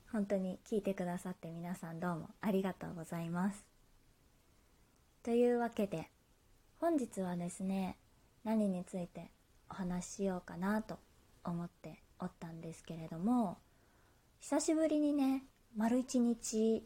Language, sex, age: Japanese, female, 20-39